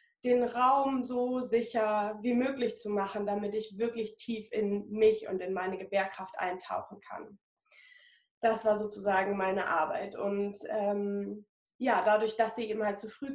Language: German